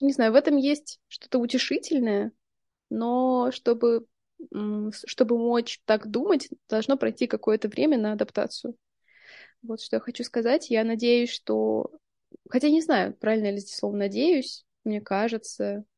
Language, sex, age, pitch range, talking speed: Russian, female, 20-39, 210-240 Hz, 145 wpm